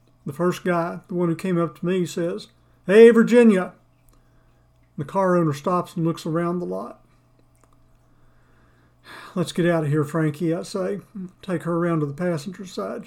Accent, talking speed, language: American, 170 wpm, English